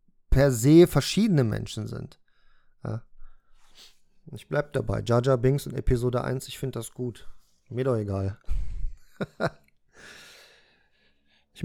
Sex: male